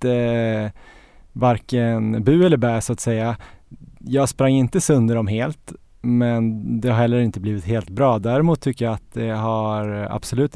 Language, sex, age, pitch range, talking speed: Swedish, male, 20-39, 110-125 Hz, 160 wpm